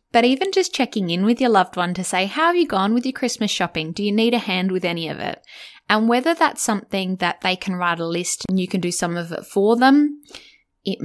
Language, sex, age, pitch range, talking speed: English, female, 10-29, 170-215 Hz, 260 wpm